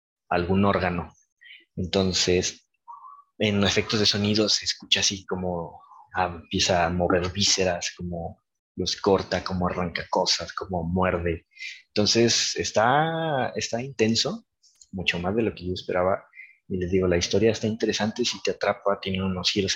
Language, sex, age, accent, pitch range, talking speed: Spanish, male, 20-39, Mexican, 90-115 Hz, 145 wpm